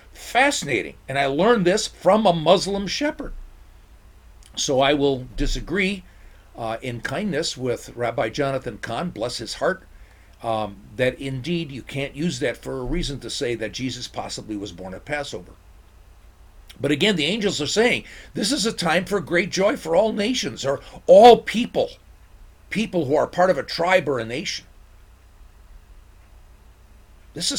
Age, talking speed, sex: 50-69, 160 wpm, male